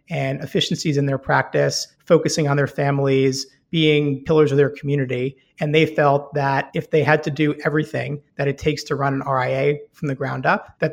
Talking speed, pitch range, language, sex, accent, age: 200 wpm, 140-155 Hz, English, male, American, 30-49